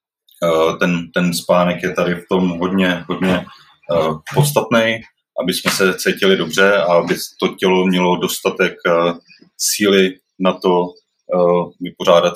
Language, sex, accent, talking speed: Czech, male, native, 120 wpm